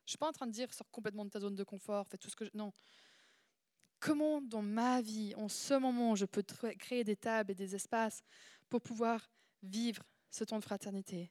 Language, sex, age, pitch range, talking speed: French, female, 20-39, 200-235 Hz, 240 wpm